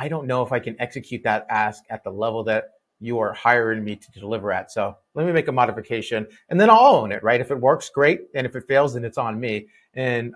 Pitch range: 115-160 Hz